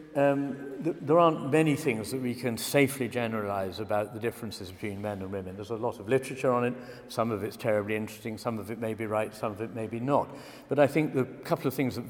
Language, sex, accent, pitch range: English, male, British, 110-135 Hz